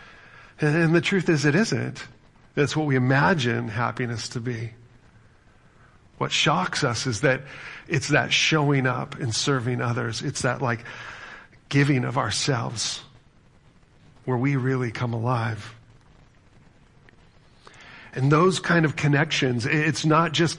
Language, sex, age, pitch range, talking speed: English, male, 40-59, 120-145 Hz, 130 wpm